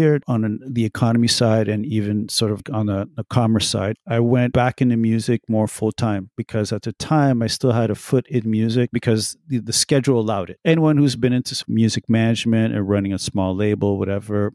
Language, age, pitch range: English, 40-59, 100-125 Hz